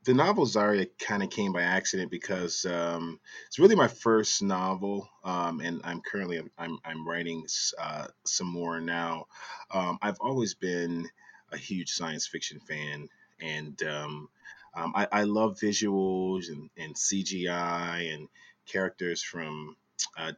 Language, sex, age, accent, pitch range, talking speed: English, male, 30-49, American, 85-110 Hz, 145 wpm